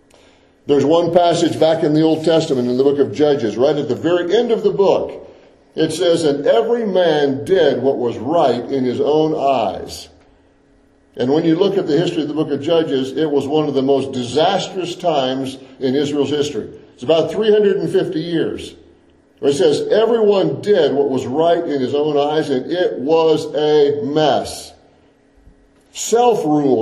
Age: 50-69